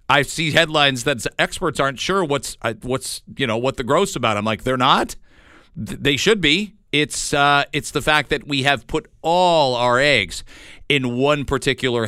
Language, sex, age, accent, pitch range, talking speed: English, male, 40-59, American, 115-145 Hz, 185 wpm